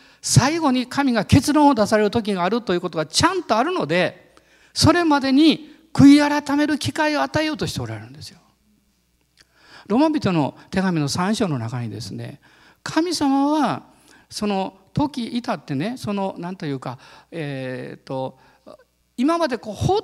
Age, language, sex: 50-69, Japanese, male